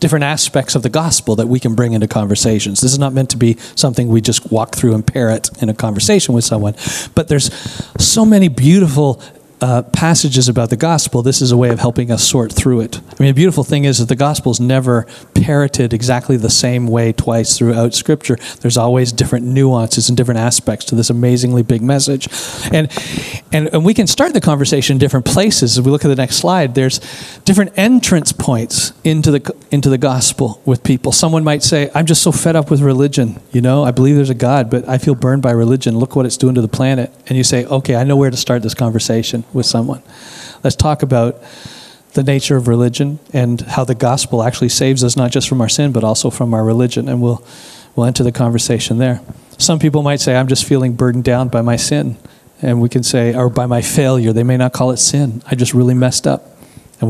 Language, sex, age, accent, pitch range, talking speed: English, male, 40-59, American, 120-140 Hz, 225 wpm